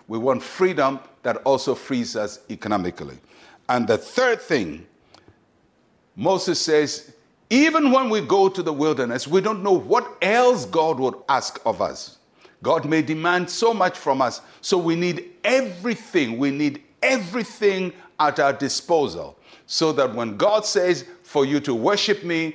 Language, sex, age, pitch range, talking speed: English, male, 60-79, 135-210 Hz, 155 wpm